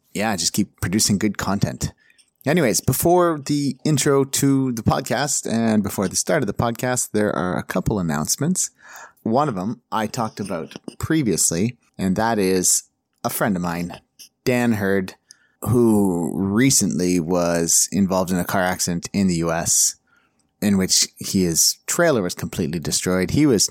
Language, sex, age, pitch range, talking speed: English, male, 30-49, 85-110 Hz, 155 wpm